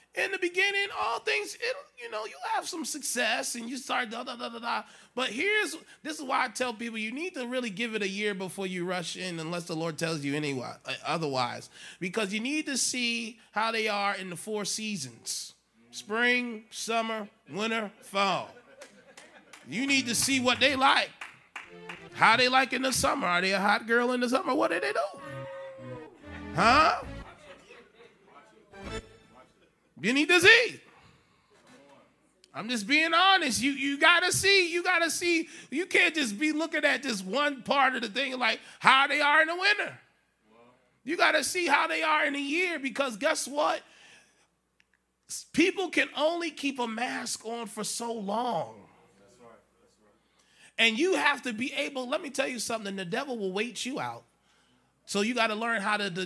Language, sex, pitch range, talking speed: English, male, 210-295 Hz, 185 wpm